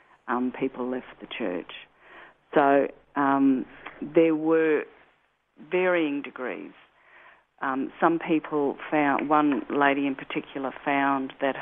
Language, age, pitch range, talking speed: English, 50-69, 140-165 Hz, 110 wpm